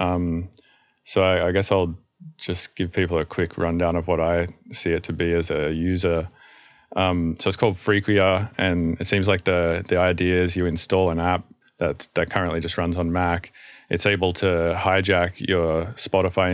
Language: English